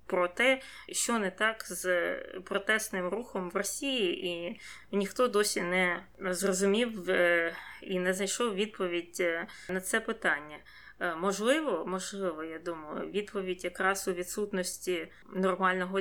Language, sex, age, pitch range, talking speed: Ukrainian, female, 20-39, 175-205 Hz, 115 wpm